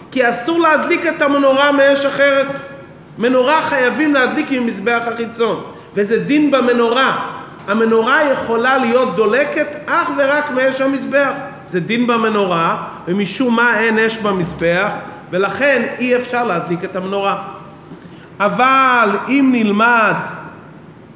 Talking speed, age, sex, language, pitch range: 115 wpm, 40-59, male, Hebrew, 225-285 Hz